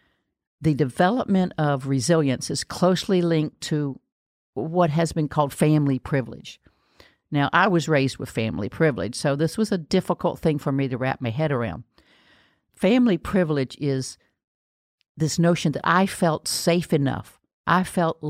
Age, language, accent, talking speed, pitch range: 50-69, English, American, 150 wpm, 135-165 Hz